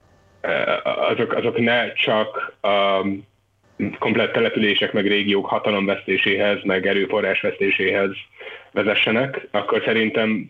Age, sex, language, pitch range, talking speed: 30-49, male, Hungarian, 95-105 Hz, 85 wpm